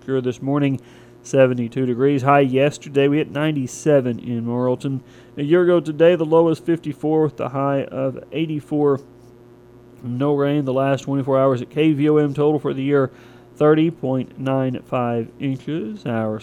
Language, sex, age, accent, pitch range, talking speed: English, male, 40-59, American, 120-150 Hz, 145 wpm